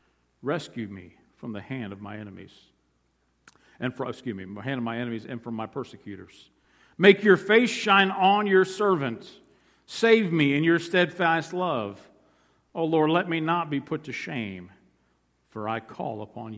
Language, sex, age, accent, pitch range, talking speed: English, male, 50-69, American, 110-165 Hz, 175 wpm